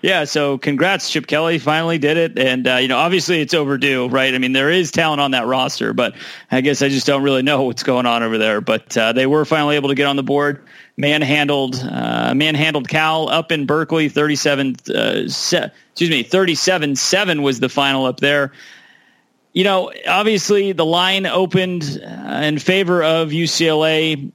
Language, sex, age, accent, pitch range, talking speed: English, male, 30-49, American, 135-160 Hz, 190 wpm